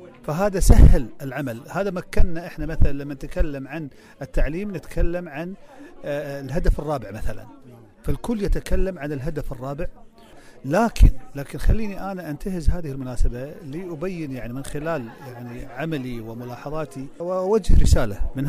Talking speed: 125 wpm